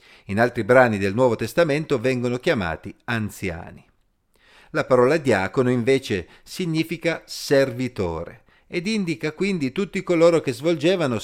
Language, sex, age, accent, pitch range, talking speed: Italian, male, 50-69, native, 110-150 Hz, 115 wpm